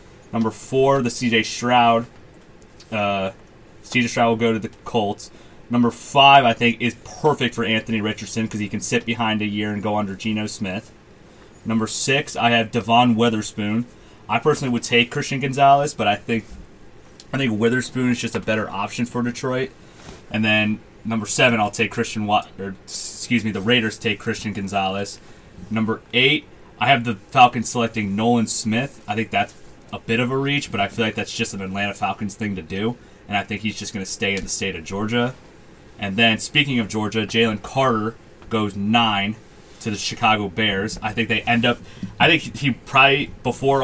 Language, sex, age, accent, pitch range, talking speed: English, male, 30-49, American, 105-120 Hz, 190 wpm